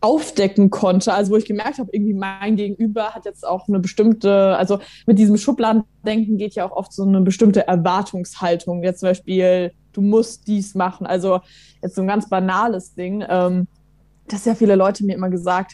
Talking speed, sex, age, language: 185 wpm, female, 20-39, German